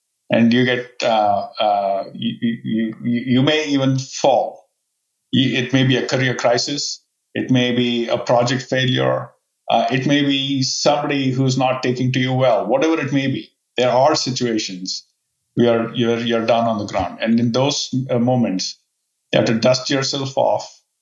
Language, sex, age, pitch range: English, male, 50-69, 115-135 Hz